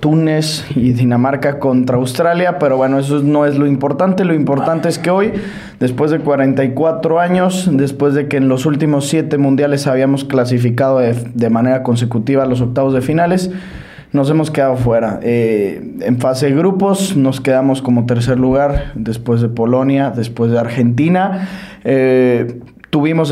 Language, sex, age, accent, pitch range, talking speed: English, male, 20-39, Mexican, 125-155 Hz, 155 wpm